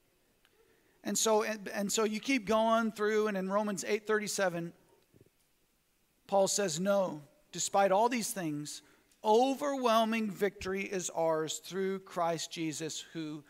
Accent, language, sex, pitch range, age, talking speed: American, English, male, 195-265 Hz, 40-59, 125 wpm